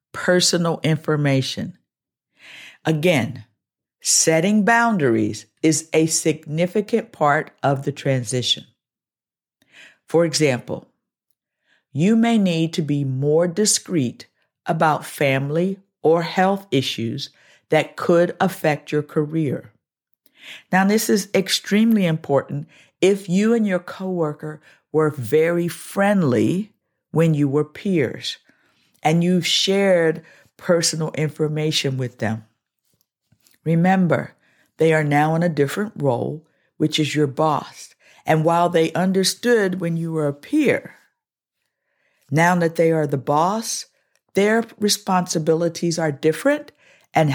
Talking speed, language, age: 110 wpm, English, 50-69